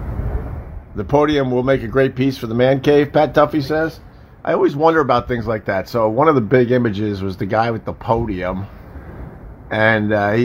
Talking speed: 200 wpm